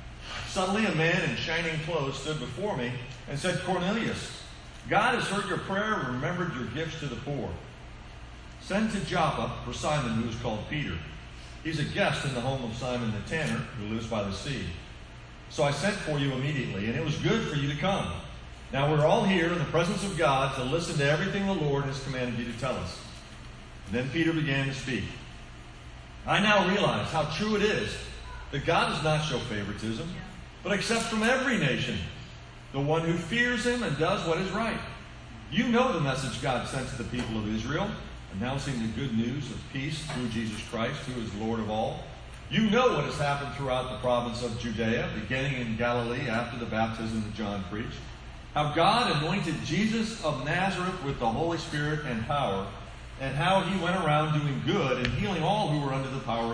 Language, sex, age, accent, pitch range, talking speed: English, male, 40-59, American, 120-165 Hz, 200 wpm